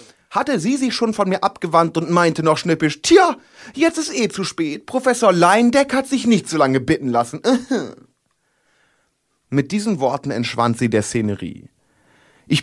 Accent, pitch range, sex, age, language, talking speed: German, 125-180 Hz, male, 30-49, German, 160 wpm